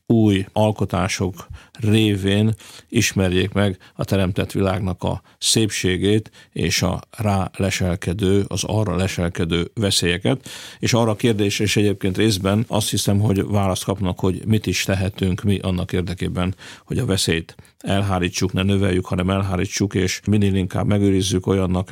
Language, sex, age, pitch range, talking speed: Hungarian, male, 50-69, 95-110 Hz, 135 wpm